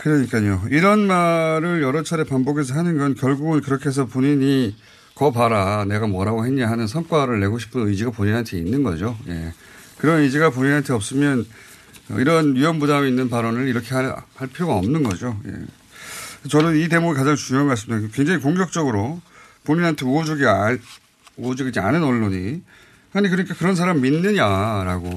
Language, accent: Korean, native